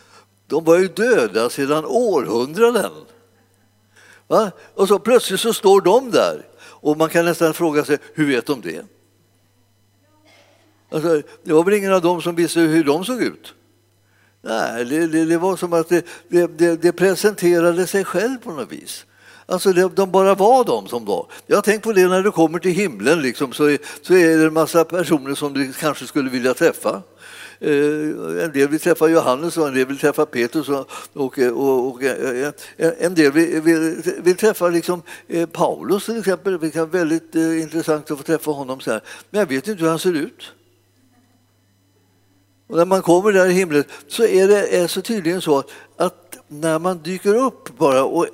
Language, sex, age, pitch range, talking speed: Swedish, male, 60-79, 140-180 Hz, 175 wpm